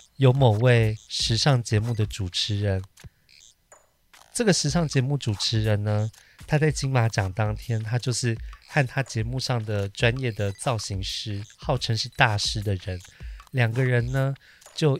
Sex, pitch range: male, 105-140 Hz